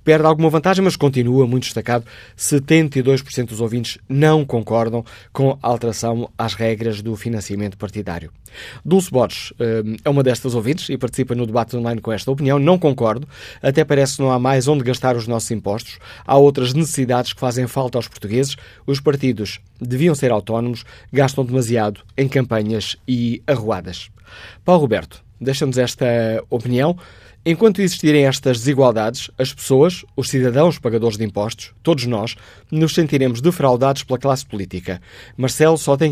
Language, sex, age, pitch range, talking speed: Portuguese, male, 20-39, 110-135 Hz, 155 wpm